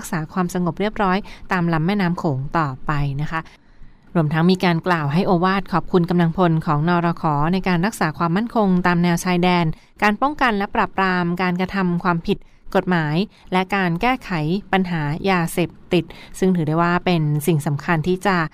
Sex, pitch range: female, 170-195 Hz